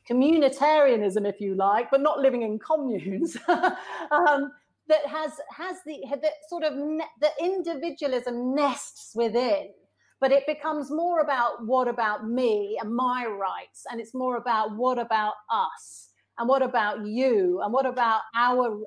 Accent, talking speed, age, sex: British, 155 wpm, 40-59, female